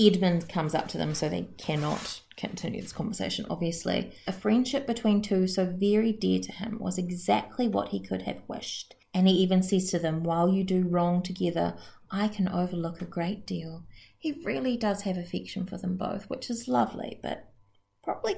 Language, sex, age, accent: English, female, 30-49, Australian